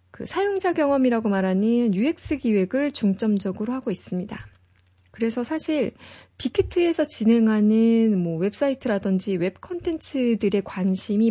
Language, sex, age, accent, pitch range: Korean, female, 20-39, native, 195-265 Hz